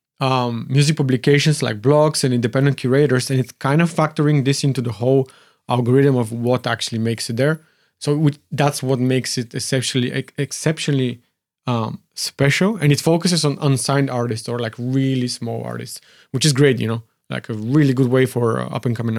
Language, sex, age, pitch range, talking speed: English, male, 30-49, 125-150 Hz, 180 wpm